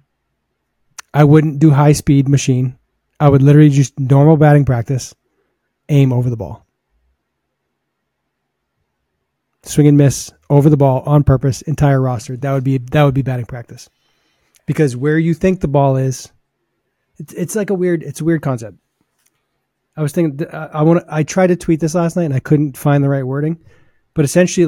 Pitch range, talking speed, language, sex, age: 135-160 Hz, 175 wpm, English, male, 30-49